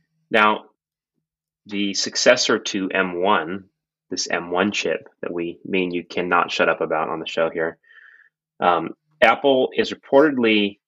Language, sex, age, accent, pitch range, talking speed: English, male, 30-49, American, 95-120 Hz, 130 wpm